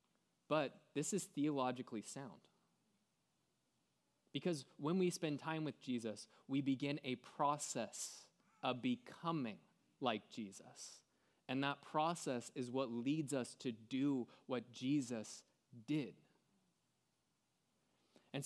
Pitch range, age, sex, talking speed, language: 120-150 Hz, 20-39, male, 105 wpm, English